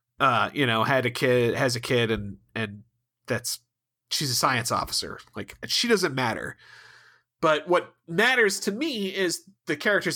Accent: American